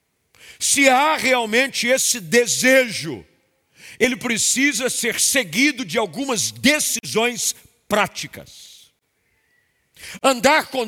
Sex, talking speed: male, 85 wpm